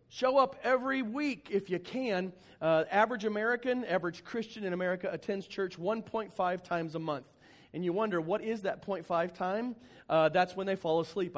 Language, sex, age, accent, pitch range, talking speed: English, male, 40-59, American, 175-230 Hz, 180 wpm